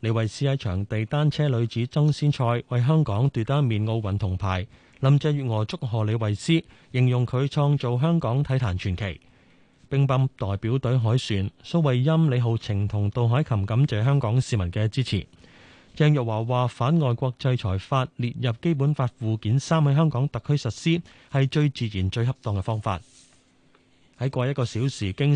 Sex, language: male, Chinese